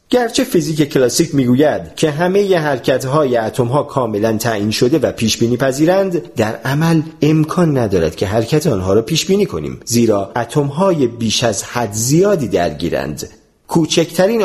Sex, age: male, 40-59